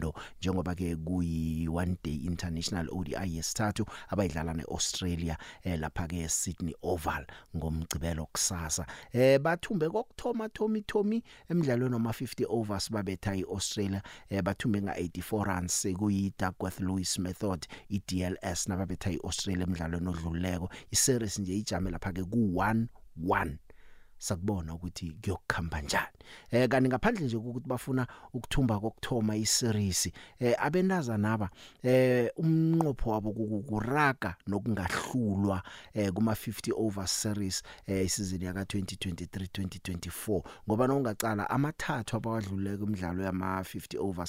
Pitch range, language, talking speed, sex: 90-115 Hz, English, 120 wpm, male